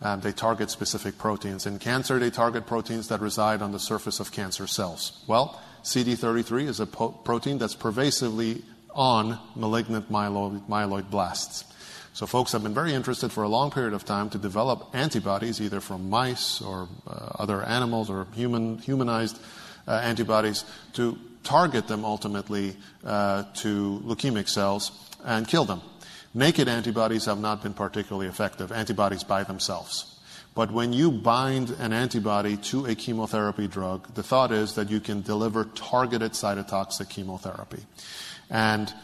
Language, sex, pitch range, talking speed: English, male, 105-120 Hz, 155 wpm